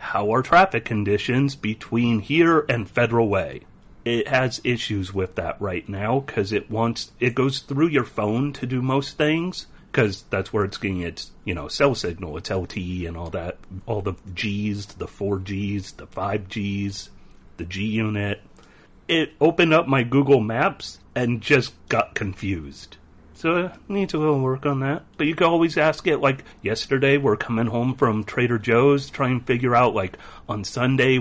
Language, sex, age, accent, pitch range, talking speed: English, male, 40-59, American, 100-135 Hz, 175 wpm